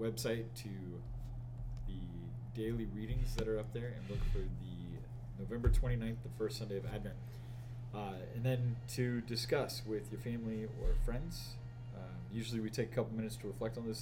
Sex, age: male, 30-49